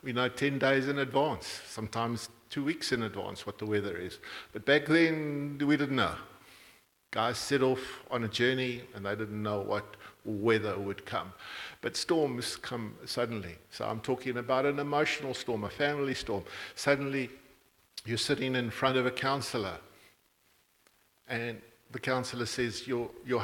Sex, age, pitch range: male, 50-69, 110-130 Hz